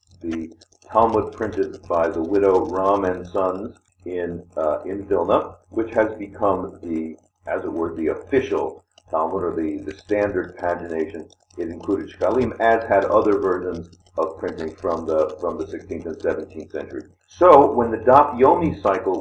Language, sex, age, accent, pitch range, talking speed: English, male, 50-69, American, 90-120 Hz, 155 wpm